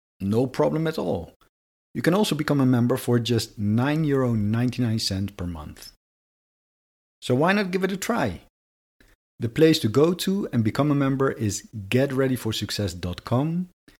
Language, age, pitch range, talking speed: English, 50-69, 95-130 Hz, 140 wpm